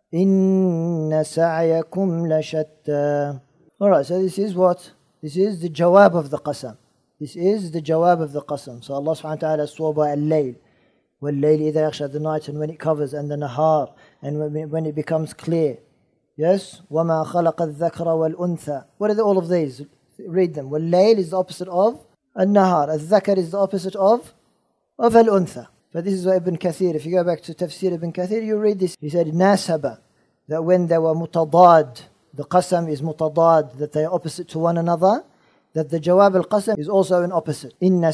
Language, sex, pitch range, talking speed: English, male, 155-185 Hz, 180 wpm